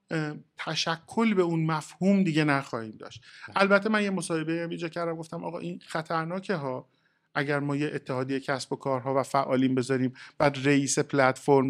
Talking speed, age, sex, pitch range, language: 165 wpm, 50-69, male, 130-165 Hz, Persian